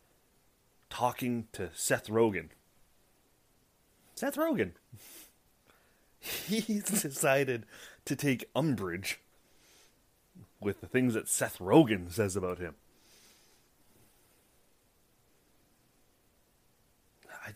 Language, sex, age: English, male, 30-49